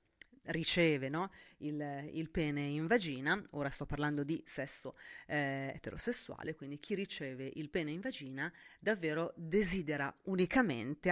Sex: female